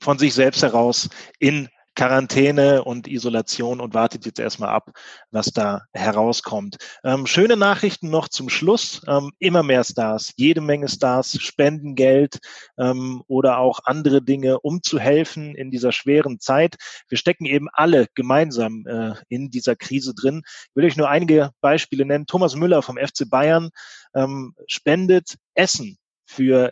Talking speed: 155 wpm